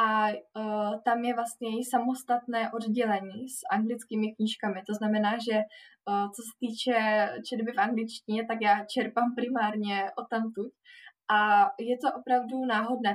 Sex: female